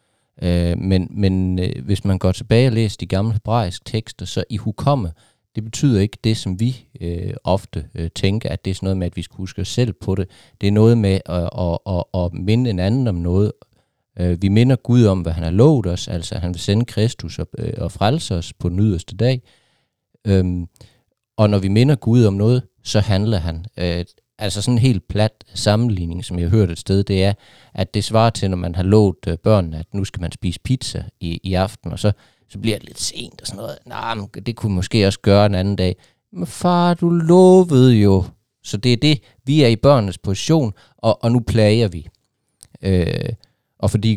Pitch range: 95-115 Hz